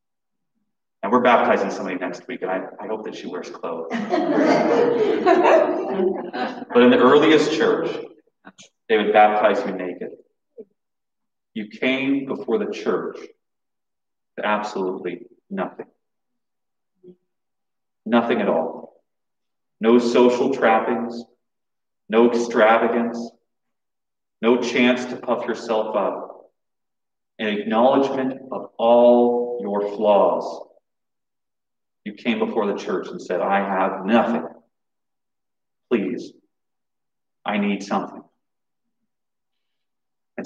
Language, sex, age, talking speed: English, male, 30-49, 100 wpm